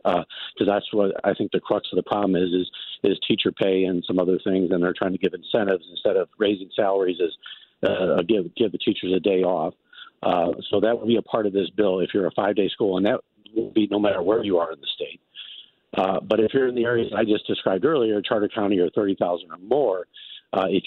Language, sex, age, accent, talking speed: English, male, 50-69, American, 245 wpm